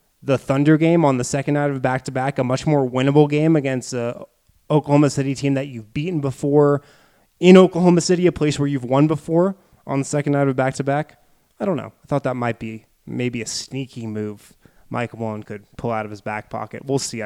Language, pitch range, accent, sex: English, 130-160 Hz, American, male